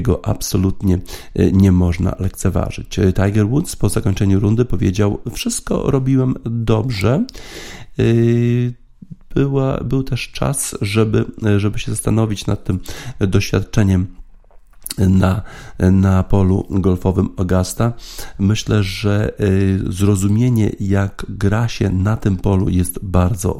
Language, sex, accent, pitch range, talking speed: Polish, male, native, 95-110 Hz, 100 wpm